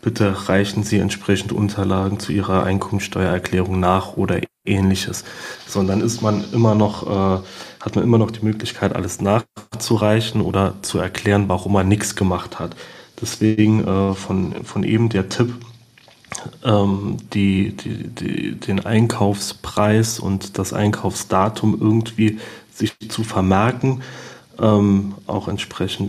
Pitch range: 100-110 Hz